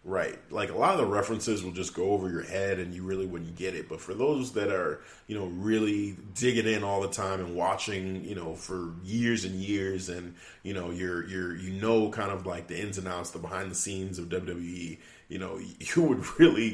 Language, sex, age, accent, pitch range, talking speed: English, male, 30-49, American, 90-105 Hz, 235 wpm